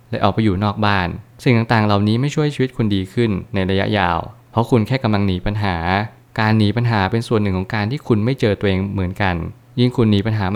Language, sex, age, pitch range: Thai, male, 20-39, 100-120 Hz